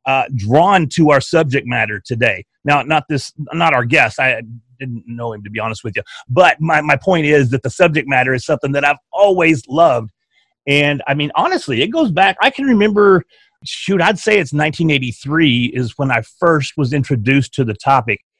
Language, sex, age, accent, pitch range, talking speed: English, male, 30-49, American, 130-190 Hz, 200 wpm